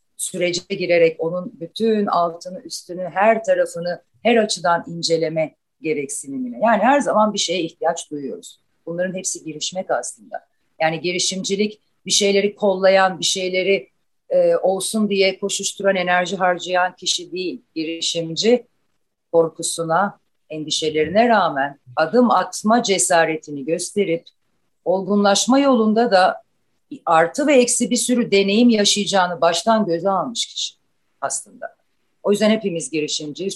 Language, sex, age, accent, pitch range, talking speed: Turkish, female, 40-59, native, 165-220 Hz, 115 wpm